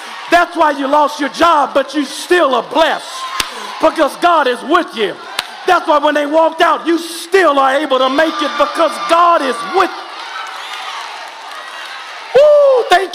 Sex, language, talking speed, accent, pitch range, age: male, English, 160 wpm, American, 295-355 Hz, 40-59